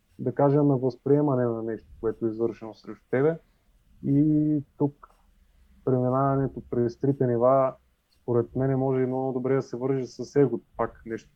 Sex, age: male, 20-39